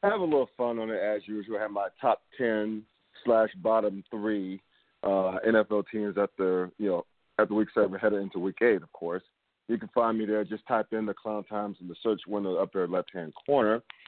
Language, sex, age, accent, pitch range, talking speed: English, male, 40-59, American, 100-115 Hz, 230 wpm